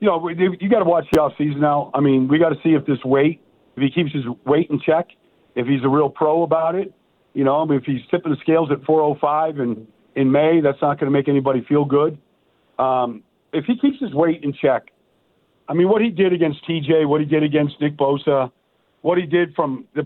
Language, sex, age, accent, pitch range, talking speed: English, male, 50-69, American, 135-160 Hz, 240 wpm